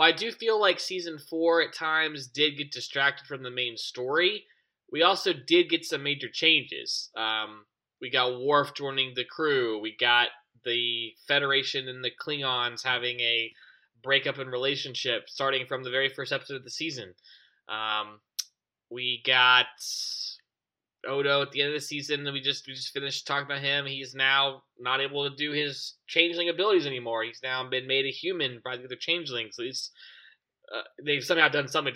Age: 20-39